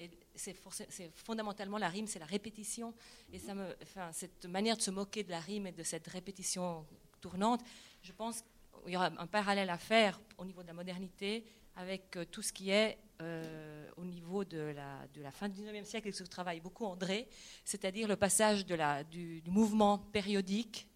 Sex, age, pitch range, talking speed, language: female, 40-59, 180-220 Hz, 205 wpm, French